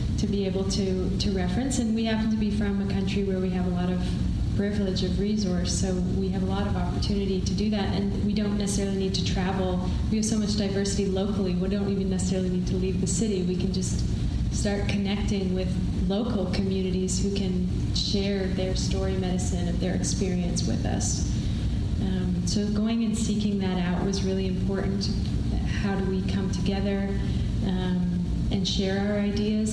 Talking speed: 190 wpm